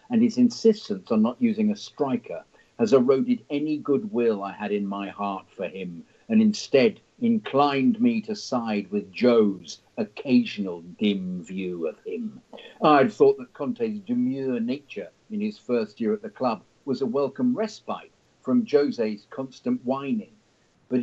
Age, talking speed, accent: 50-69, 155 wpm, British